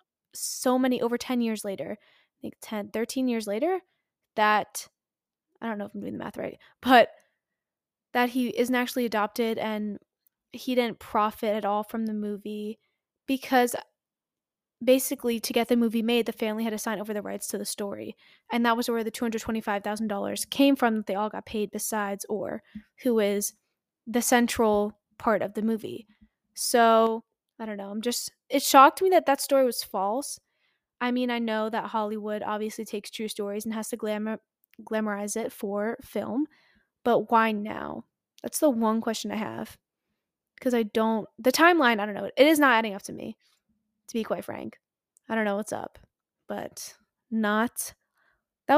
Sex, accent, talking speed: female, American, 180 wpm